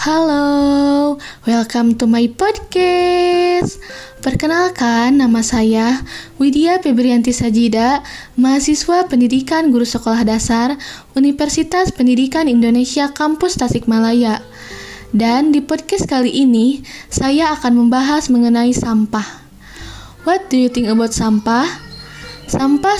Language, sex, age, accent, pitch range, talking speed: Indonesian, female, 10-29, native, 230-285 Hz, 100 wpm